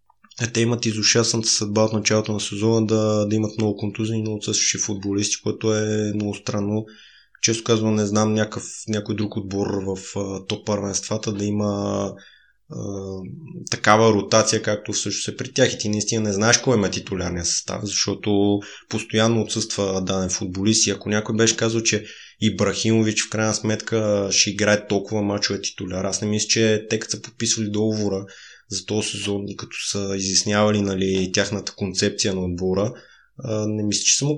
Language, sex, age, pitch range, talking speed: Bulgarian, male, 20-39, 100-115 Hz, 170 wpm